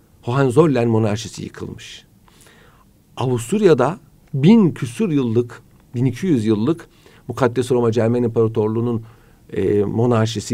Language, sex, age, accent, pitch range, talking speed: Turkish, male, 50-69, native, 110-150 Hz, 85 wpm